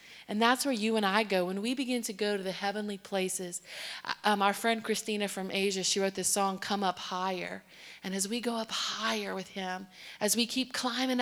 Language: English